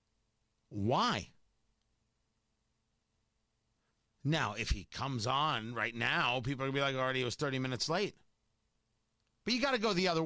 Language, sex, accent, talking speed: English, male, American, 160 wpm